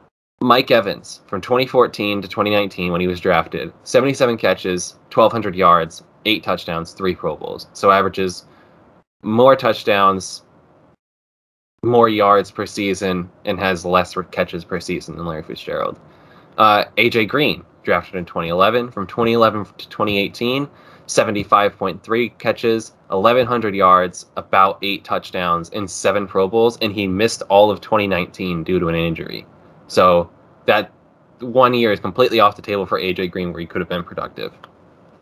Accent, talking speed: American, 145 wpm